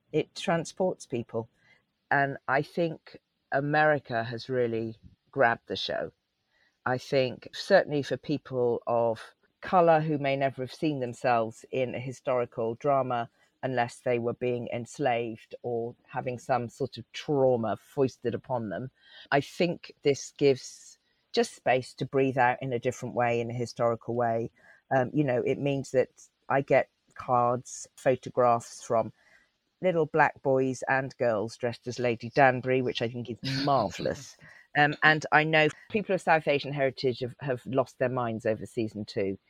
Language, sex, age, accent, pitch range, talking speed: English, female, 40-59, British, 120-150 Hz, 155 wpm